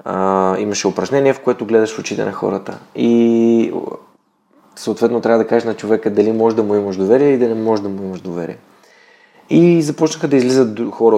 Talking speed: 195 wpm